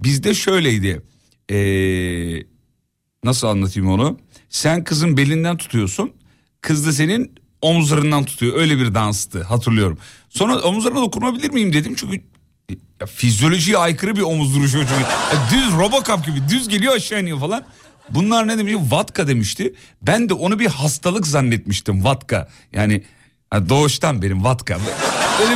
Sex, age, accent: male, 40-59, native